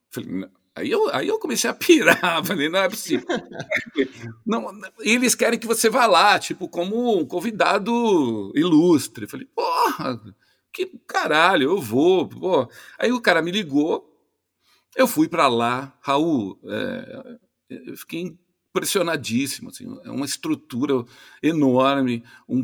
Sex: male